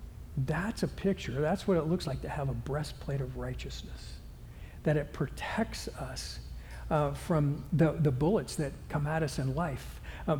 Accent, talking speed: American, 175 wpm